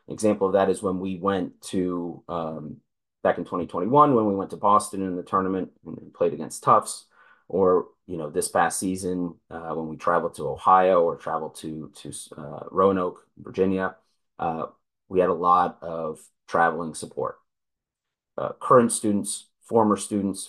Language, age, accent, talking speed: English, 30-49, American, 165 wpm